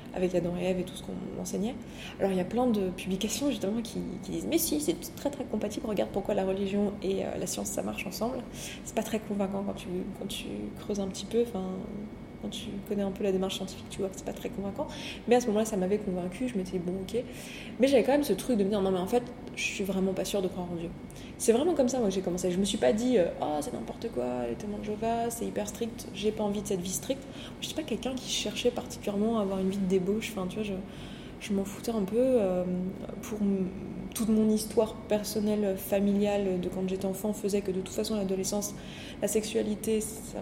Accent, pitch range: French, 190-220 Hz